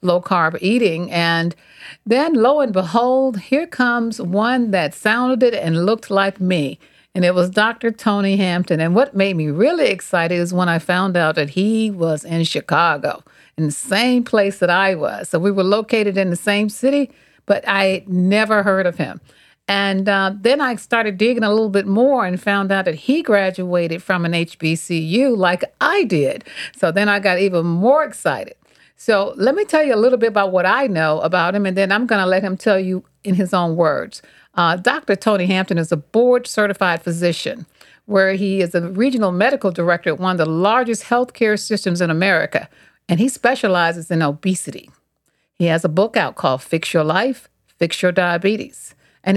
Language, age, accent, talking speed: English, 50-69, American, 190 wpm